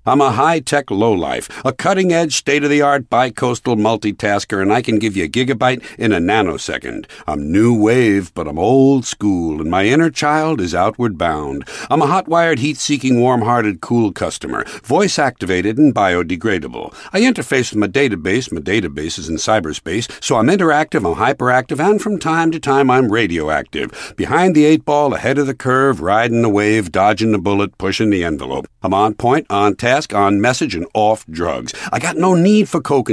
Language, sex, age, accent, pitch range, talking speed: English, male, 60-79, American, 105-145 Hz, 180 wpm